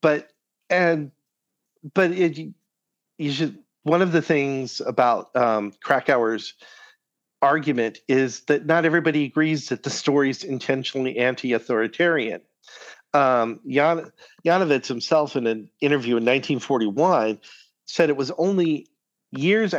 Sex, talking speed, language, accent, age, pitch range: male, 115 wpm, English, American, 50-69, 125-155 Hz